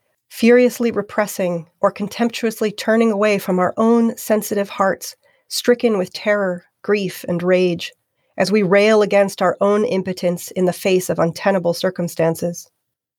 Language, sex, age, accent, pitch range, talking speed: English, female, 40-59, American, 175-210 Hz, 135 wpm